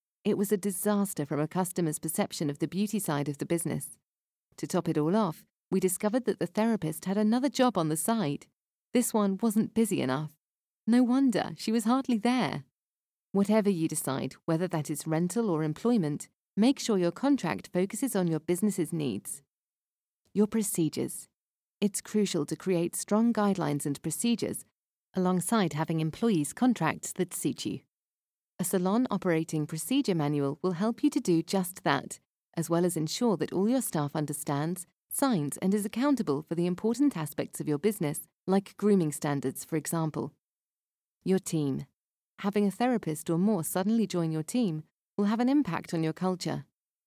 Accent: British